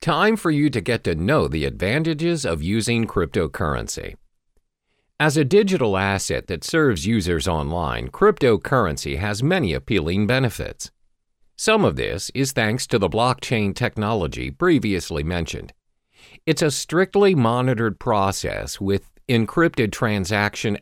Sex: male